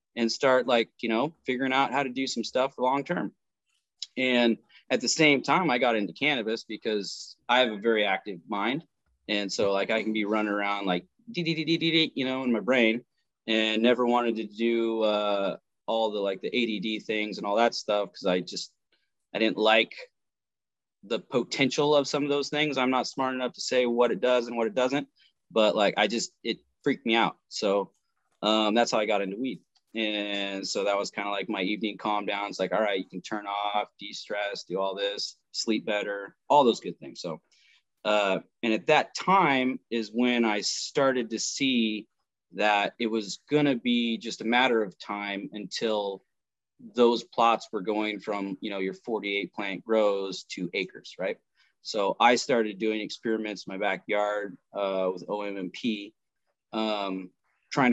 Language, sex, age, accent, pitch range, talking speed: English, male, 20-39, American, 100-125 Hz, 195 wpm